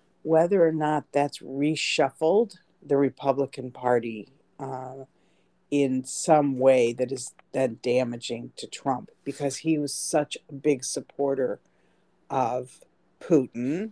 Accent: American